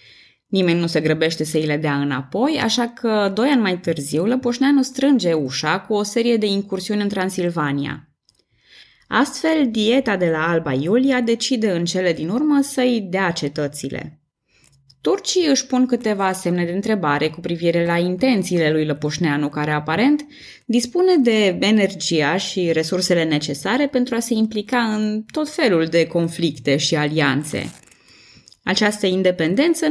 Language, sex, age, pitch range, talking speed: Romanian, female, 20-39, 160-240 Hz, 145 wpm